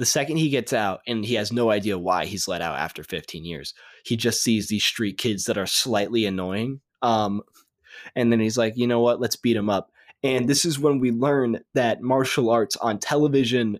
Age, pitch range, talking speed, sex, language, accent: 20-39, 105-130 Hz, 220 wpm, male, English, American